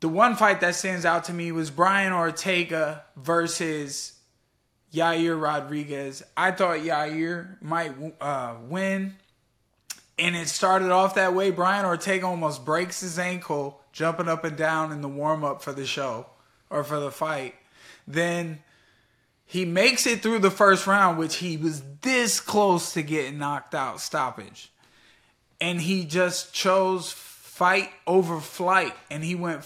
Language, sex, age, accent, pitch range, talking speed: English, male, 20-39, American, 160-190 Hz, 150 wpm